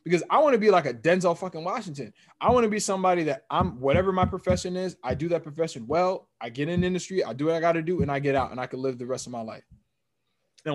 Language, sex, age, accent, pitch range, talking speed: English, male, 20-39, American, 140-195 Hz, 290 wpm